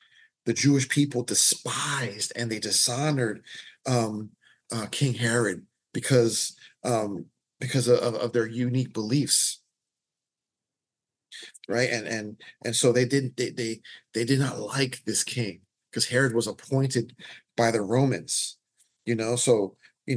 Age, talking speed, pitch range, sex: 40-59, 135 wpm, 115-135 Hz, male